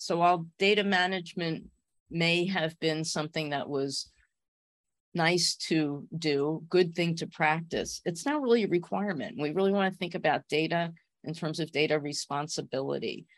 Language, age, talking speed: English, 40-59, 155 wpm